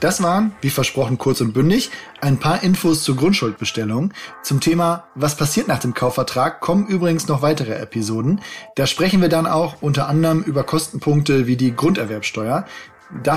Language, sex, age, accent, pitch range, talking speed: German, male, 20-39, German, 135-165 Hz, 165 wpm